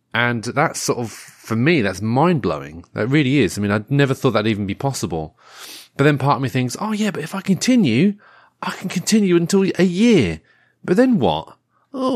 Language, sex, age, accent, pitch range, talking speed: English, male, 30-49, British, 105-145 Hz, 210 wpm